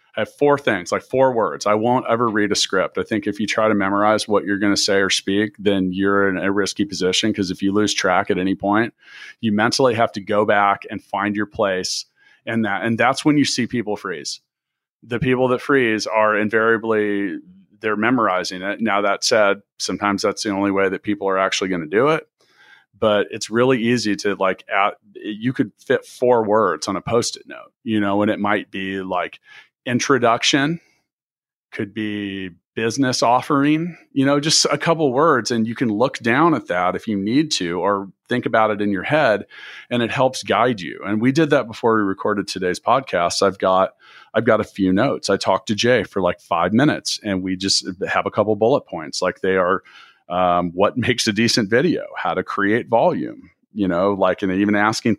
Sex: male